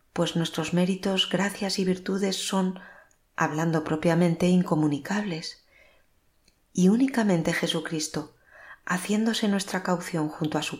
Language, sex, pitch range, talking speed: Spanish, female, 165-210 Hz, 105 wpm